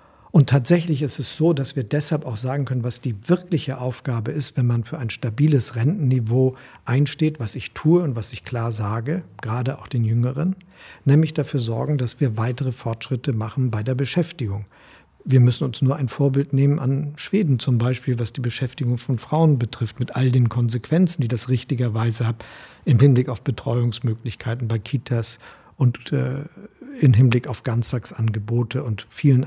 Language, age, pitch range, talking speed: German, 50-69, 115-140 Hz, 170 wpm